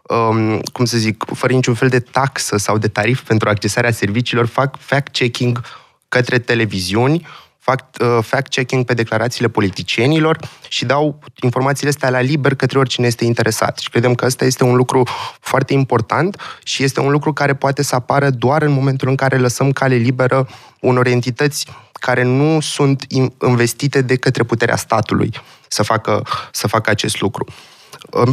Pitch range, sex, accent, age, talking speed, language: 115-135 Hz, male, native, 20-39, 155 wpm, Romanian